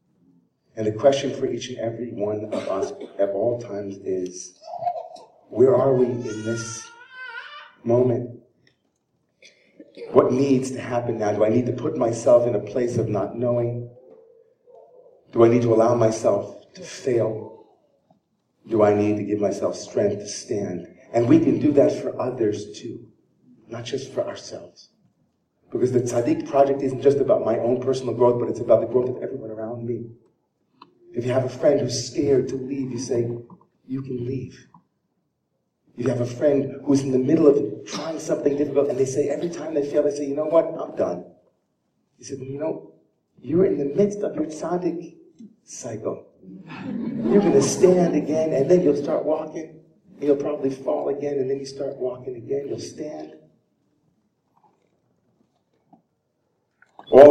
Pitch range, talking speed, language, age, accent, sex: 120-150 Hz, 170 wpm, English, 40-59, American, male